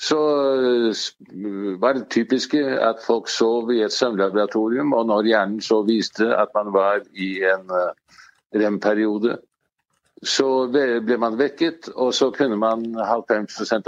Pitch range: 110-140 Hz